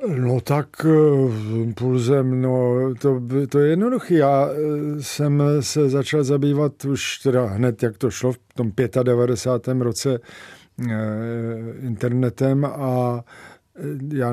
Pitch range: 120-140 Hz